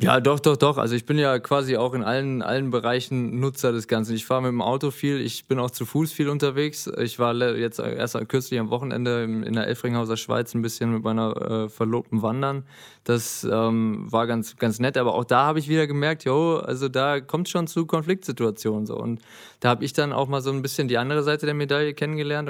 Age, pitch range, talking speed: 20-39, 120-140 Hz, 230 wpm